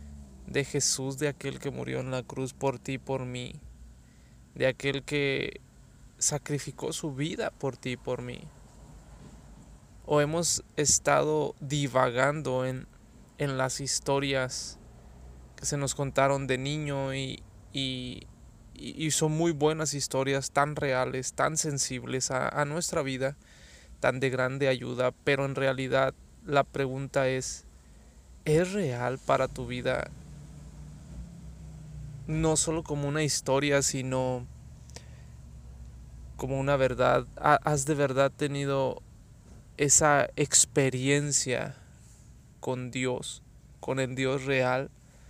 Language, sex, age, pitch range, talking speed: Spanish, male, 20-39, 125-140 Hz, 115 wpm